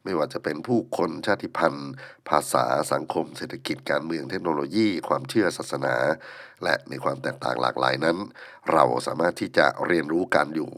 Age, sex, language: 60-79, male, Thai